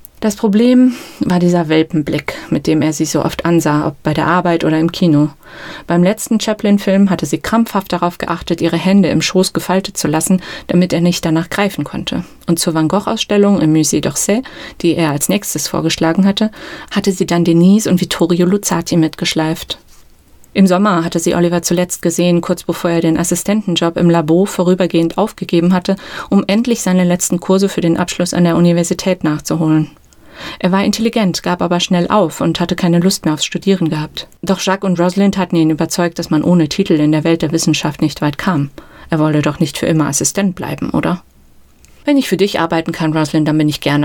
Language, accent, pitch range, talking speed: German, German, 160-190 Hz, 195 wpm